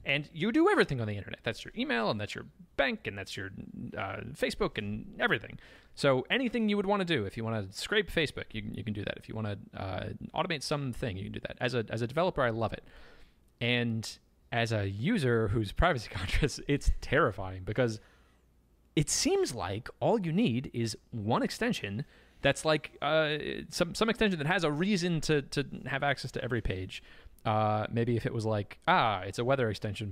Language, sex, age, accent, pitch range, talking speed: English, male, 30-49, American, 105-140 Hz, 210 wpm